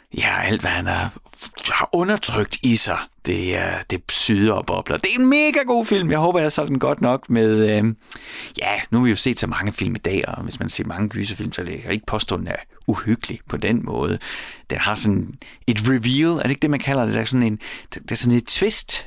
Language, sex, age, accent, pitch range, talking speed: Danish, male, 30-49, native, 100-130 Hz, 240 wpm